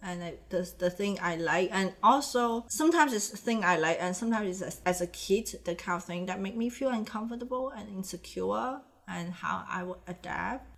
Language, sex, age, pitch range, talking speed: English, female, 30-49, 180-260 Hz, 205 wpm